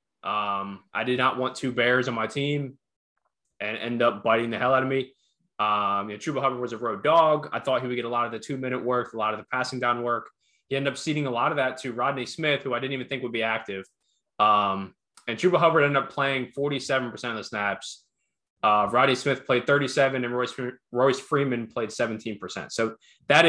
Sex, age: male, 20-39